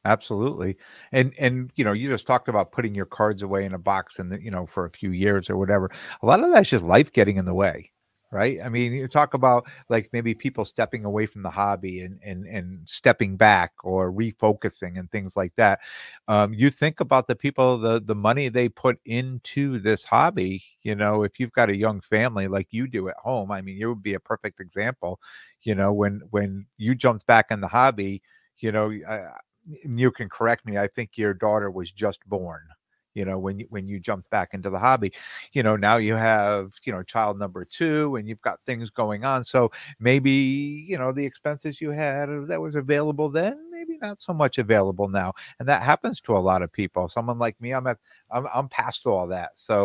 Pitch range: 100-125 Hz